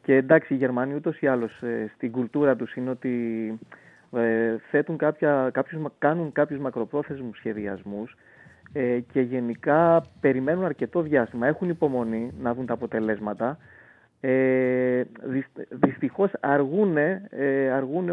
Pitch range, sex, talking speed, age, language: 125-165 Hz, male, 95 wpm, 30-49, Greek